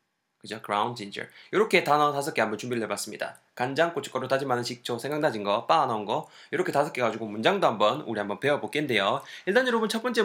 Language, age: Korean, 20-39